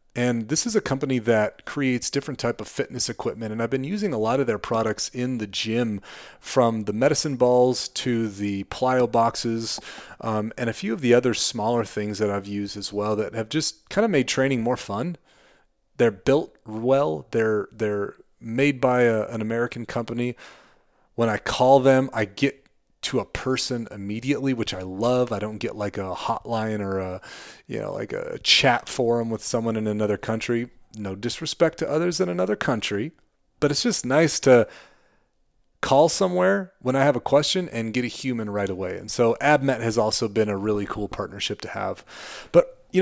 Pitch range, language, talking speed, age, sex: 110-140 Hz, English, 190 wpm, 30-49, male